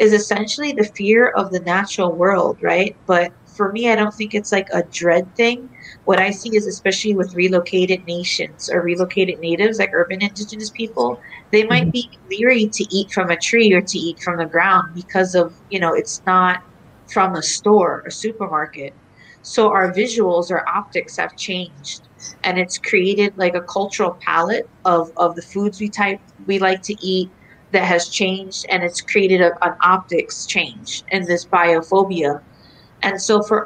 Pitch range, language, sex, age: 175-210 Hz, English, female, 30-49